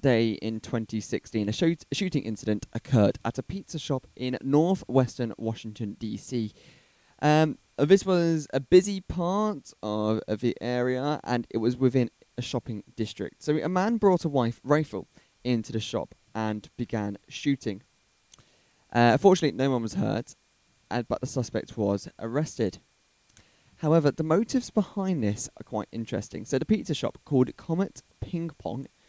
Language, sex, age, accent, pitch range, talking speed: English, male, 20-39, British, 110-150 Hz, 150 wpm